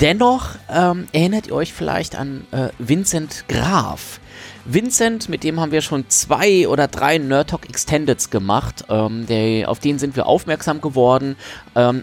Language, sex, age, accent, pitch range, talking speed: German, male, 30-49, German, 110-140 Hz, 160 wpm